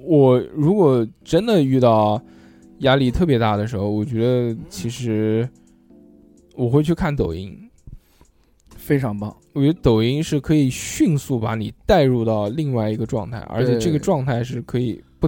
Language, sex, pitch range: Chinese, male, 110-150 Hz